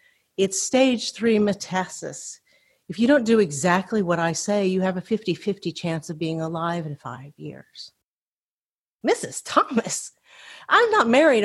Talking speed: 145 wpm